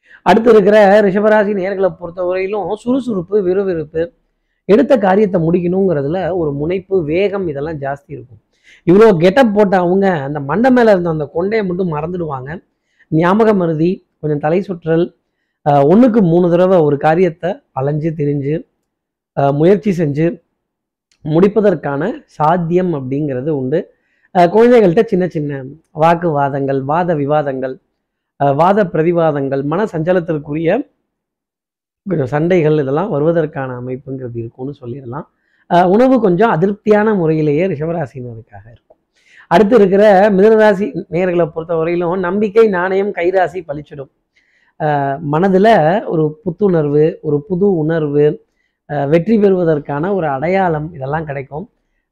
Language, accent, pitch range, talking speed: Tamil, native, 150-195 Hz, 110 wpm